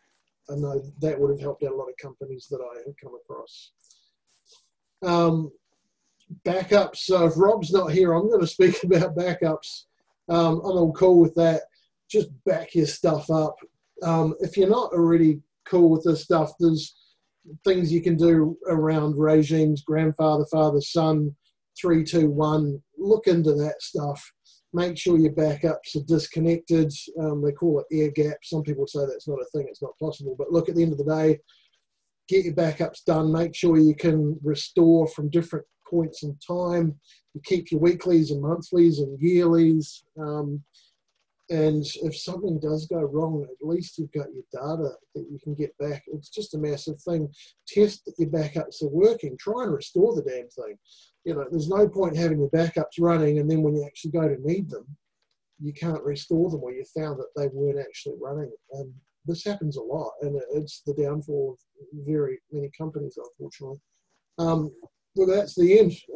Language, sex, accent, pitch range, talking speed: English, male, Australian, 150-175 Hz, 180 wpm